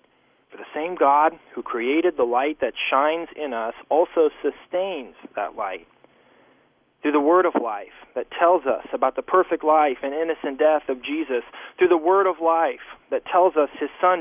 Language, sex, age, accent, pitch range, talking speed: English, male, 40-59, American, 135-175 Hz, 175 wpm